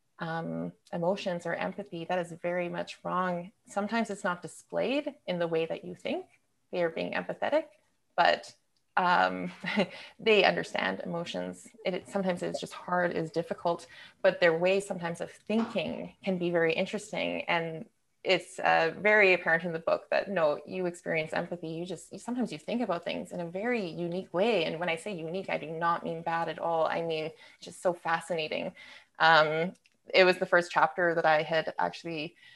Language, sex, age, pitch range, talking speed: English, female, 20-39, 165-200 Hz, 180 wpm